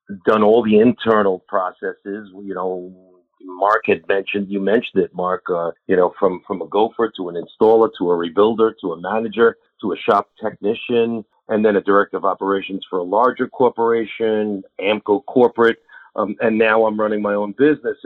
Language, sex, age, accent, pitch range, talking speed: English, male, 40-59, American, 100-125 Hz, 180 wpm